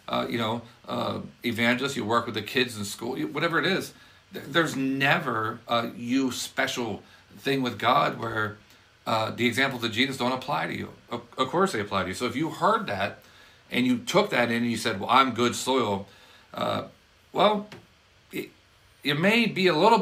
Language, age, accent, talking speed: English, 40-59, American, 190 wpm